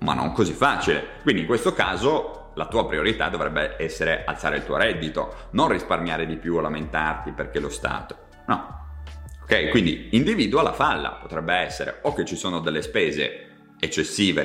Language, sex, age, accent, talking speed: Italian, male, 30-49, native, 170 wpm